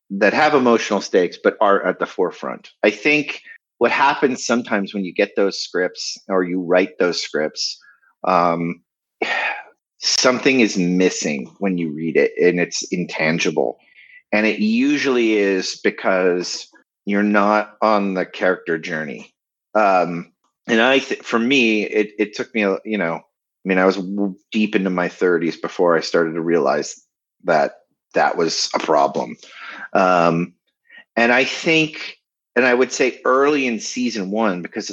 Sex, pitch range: male, 90-125 Hz